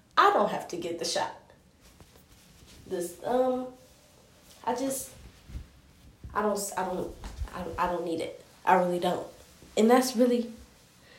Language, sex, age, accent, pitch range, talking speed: English, female, 20-39, American, 185-235 Hz, 135 wpm